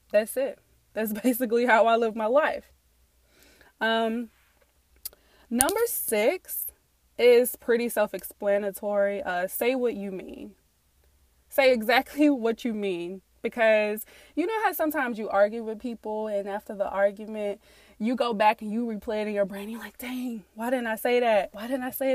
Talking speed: 165 wpm